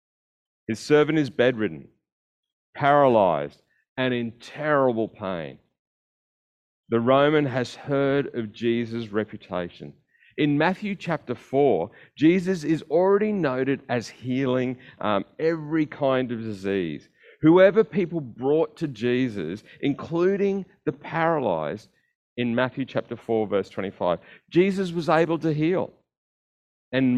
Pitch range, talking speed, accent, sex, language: 105-150 Hz, 115 wpm, Australian, male, English